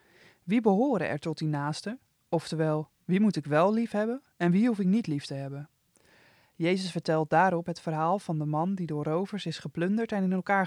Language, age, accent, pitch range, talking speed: Dutch, 20-39, Dutch, 155-200 Hz, 210 wpm